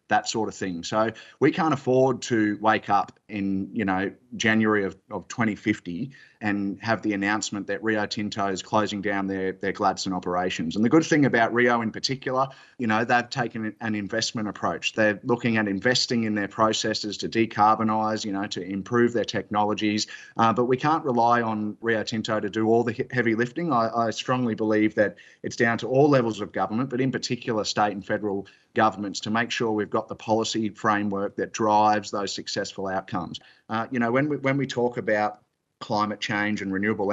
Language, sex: English, male